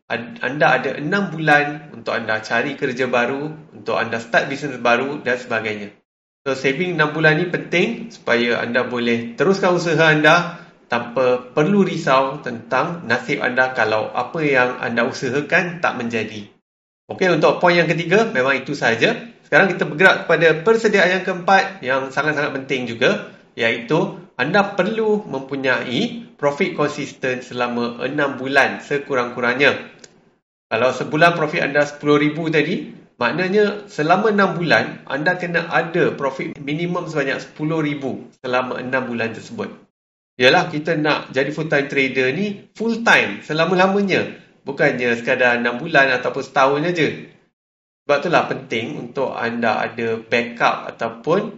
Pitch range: 125-175 Hz